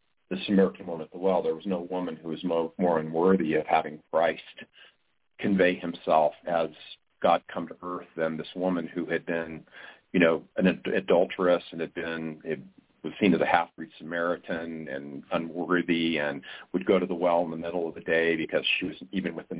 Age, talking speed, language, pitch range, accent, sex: 40-59, 190 wpm, English, 80-95 Hz, American, male